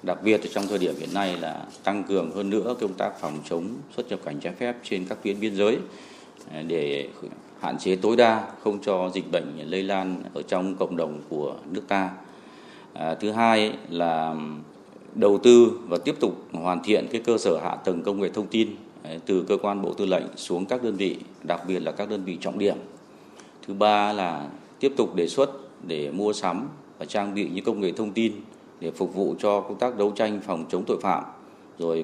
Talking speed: 210 wpm